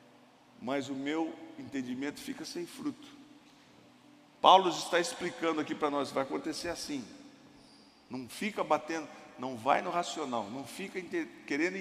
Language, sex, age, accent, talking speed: Portuguese, male, 50-69, Brazilian, 135 wpm